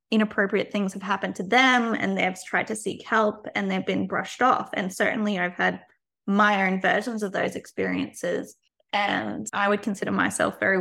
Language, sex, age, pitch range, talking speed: English, female, 20-39, 195-220 Hz, 185 wpm